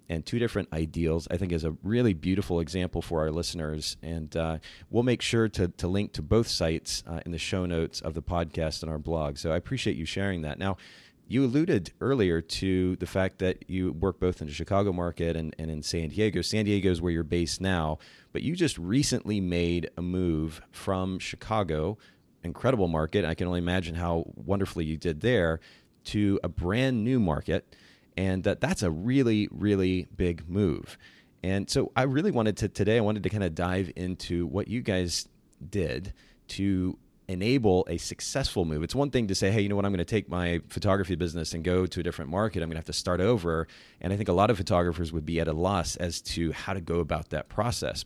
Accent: American